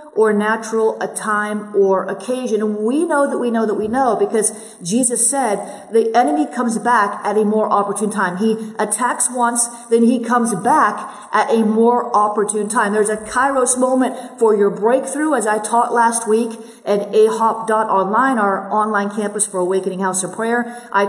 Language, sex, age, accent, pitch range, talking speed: English, female, 40-59, American, 215-250 Hz, 185 wpm